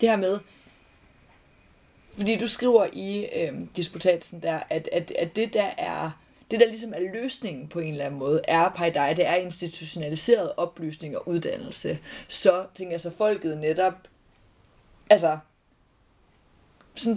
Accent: native